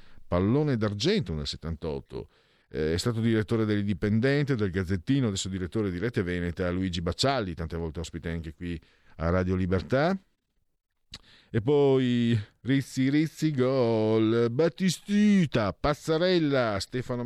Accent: native